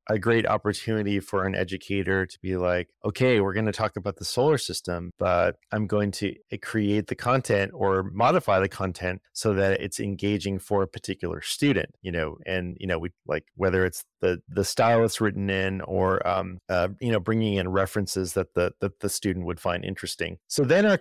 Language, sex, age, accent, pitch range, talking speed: English, male, 30-49, American, 95-115 Hz, 200 wpm